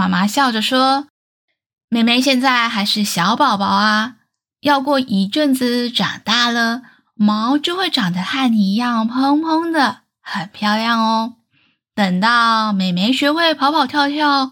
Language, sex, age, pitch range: Chinese, female, 10-29, 210-285 Hz